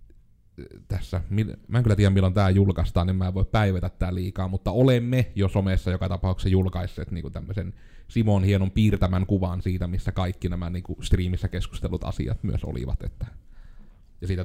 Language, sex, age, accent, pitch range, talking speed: Finnish, male, 30-49, native, 90-110 Hz, 170 wpm